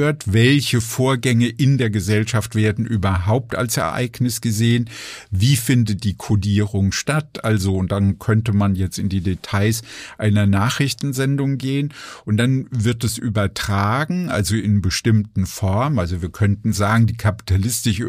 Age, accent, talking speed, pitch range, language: 50-69, German, 140 wpm, 105-125 Hz, German